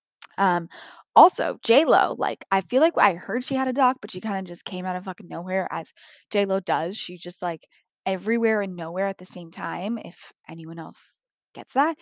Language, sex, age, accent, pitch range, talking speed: English, female, 20-39, American, 175-210 Hz, 205 wpm